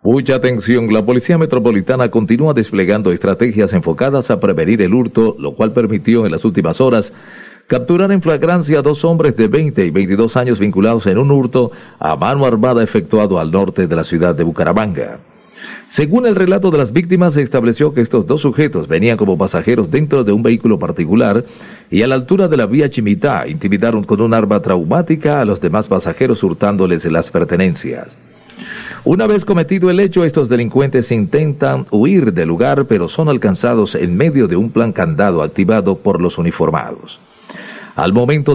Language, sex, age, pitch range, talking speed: Spanish, male, 40-59, 110-150 Hz, 175 wpm